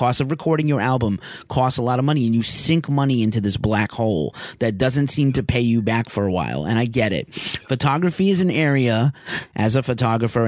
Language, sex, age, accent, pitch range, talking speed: English, male, 30-49, American, 105-135 Hz, 225 wpm